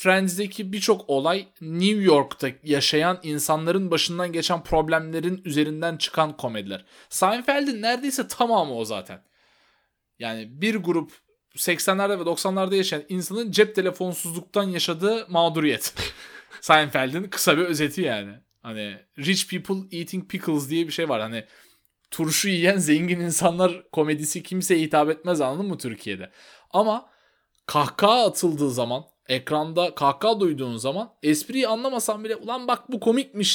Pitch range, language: 150-195 Hz, Turkish